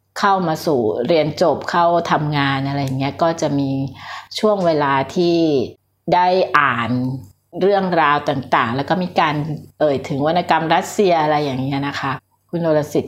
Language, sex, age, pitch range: Thai, female, 60-79, 145-195 Hz